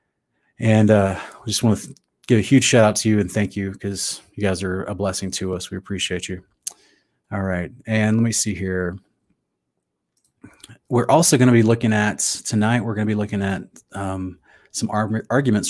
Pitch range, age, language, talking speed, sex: 100-120 Hz, 30-49, English, 195 wpm, male